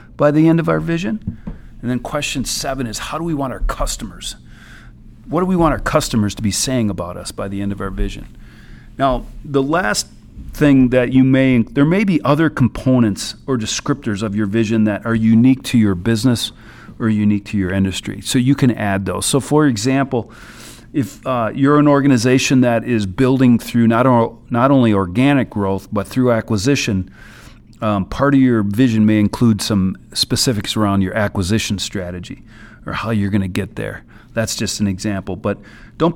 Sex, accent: male, American